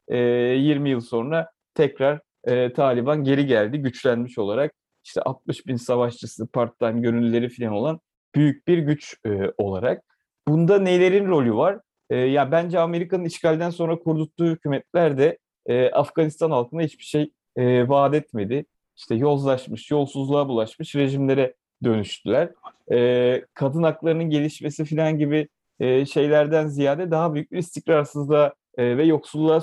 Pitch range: 125-160 Hz